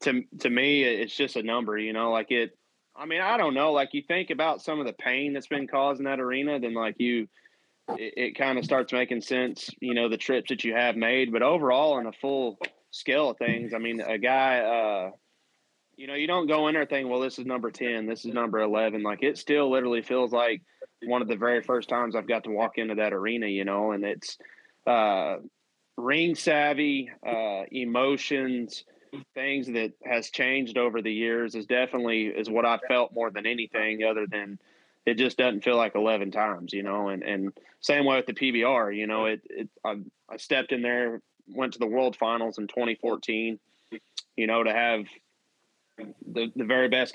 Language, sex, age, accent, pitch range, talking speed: English, male, 20-39, American, 115-130 Hz, 210 wpm